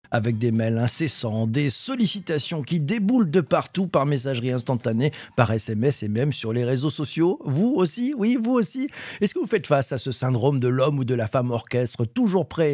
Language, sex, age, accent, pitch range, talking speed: French, male, 50-69, French, 120-170 Hz, 205 wpm